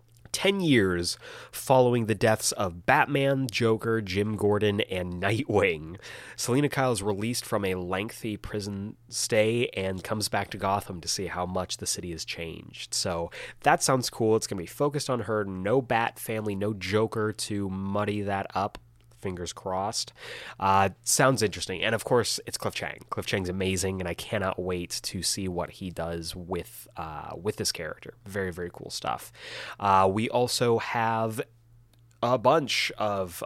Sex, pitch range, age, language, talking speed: male, 95-125 Hz, 30-49, English, 165 wpm